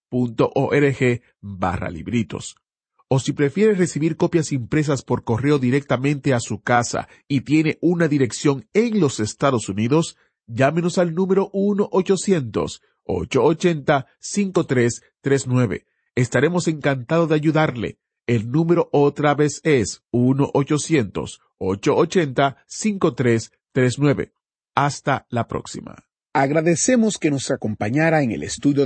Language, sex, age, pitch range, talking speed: Spanish, male, 40-59, 125-170 Hz, 95 wpm